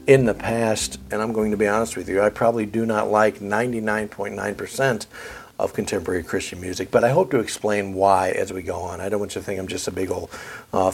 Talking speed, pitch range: 235 wpm, 100-120 Hz